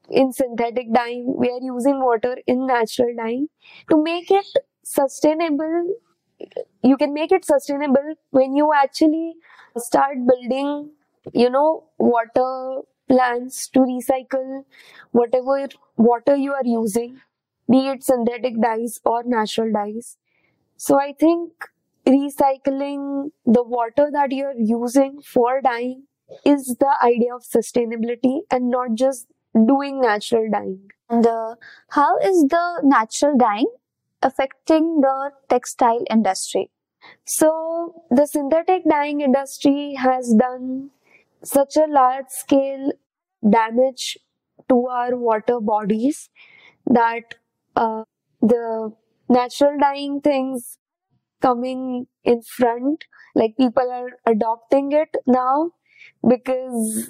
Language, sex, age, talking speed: English, female, 20-39, 115 wpm